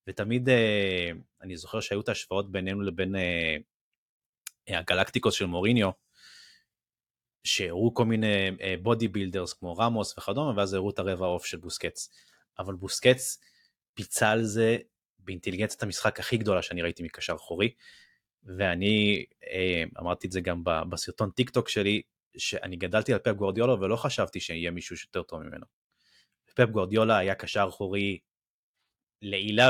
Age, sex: 30-49, male